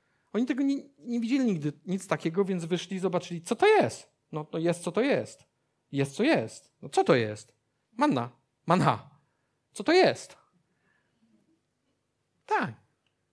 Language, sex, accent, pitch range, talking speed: Polish, male, native, 155-235 Hz, 155 wpm